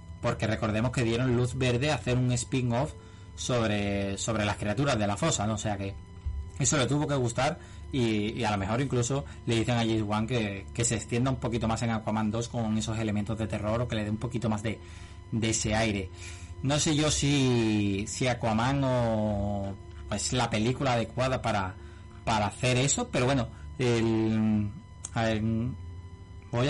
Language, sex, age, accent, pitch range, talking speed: Spanish, male, 20-39, Spanish, 100-125 Hz, 190 wpm